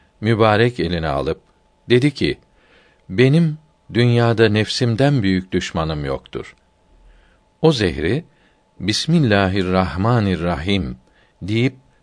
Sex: male